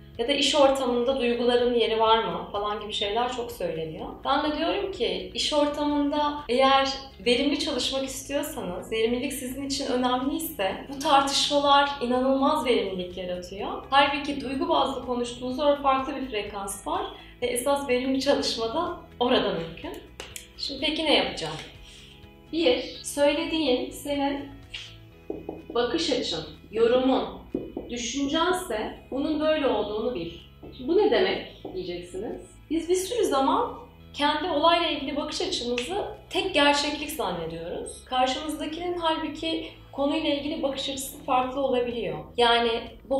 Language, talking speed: Turkish, 120 wpm